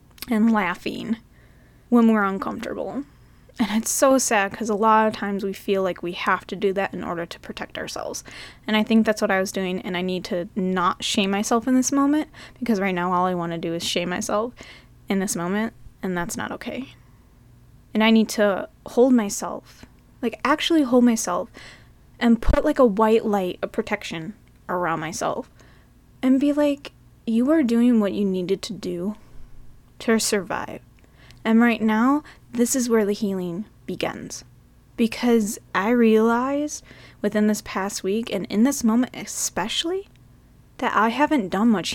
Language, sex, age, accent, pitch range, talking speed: English, female, 10-29, American, 190-235 Hz, 175 wpm